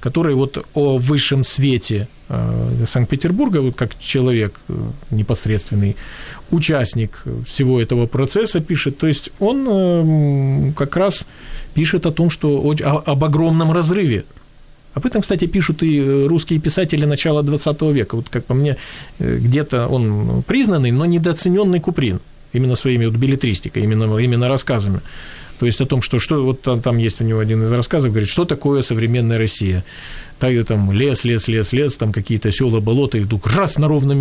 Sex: male